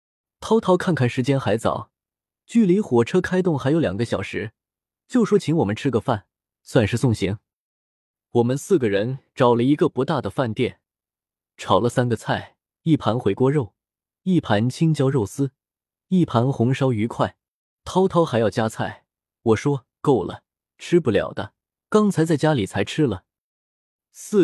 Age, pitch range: 20-39, 110-160 Hz